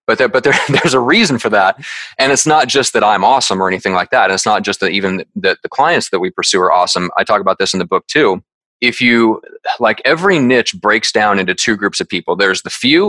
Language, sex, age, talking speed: English, male, 30-49, 260 wpm